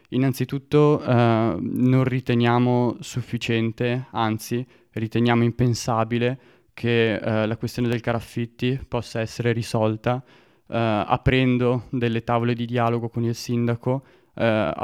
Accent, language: native, Italian